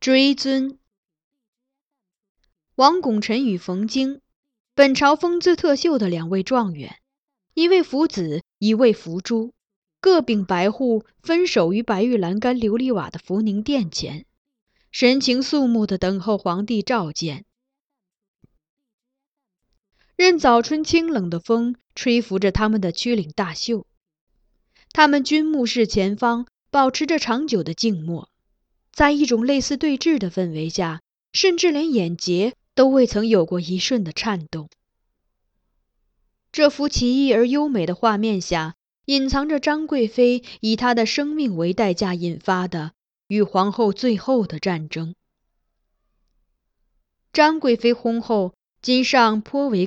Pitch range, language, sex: 190-275 Hz, Chinese, female